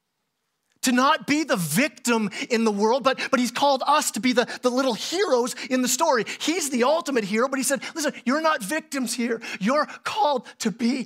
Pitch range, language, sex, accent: 210-265 Hz, English, male, American